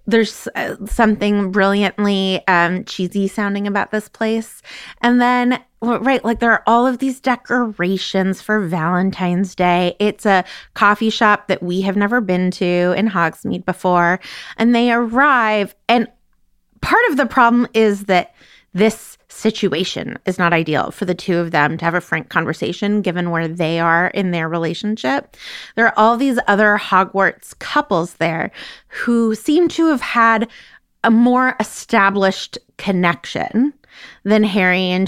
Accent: American